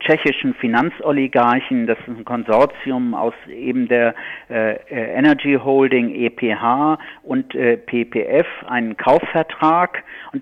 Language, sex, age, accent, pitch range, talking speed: German, male, 50-69, German, 120-160 Hz, 110 wpm